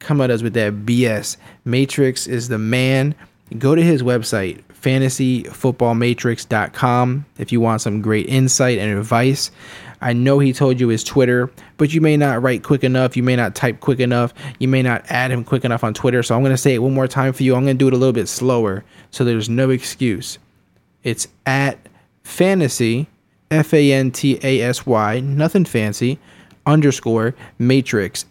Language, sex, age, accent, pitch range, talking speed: English, male, 20-39, American, 115-135 Hz, 180 wpm